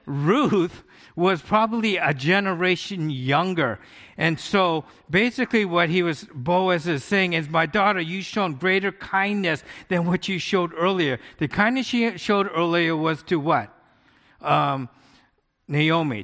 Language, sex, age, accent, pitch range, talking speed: English, male, 50-69, American, 160-200 Hz, 135 wpm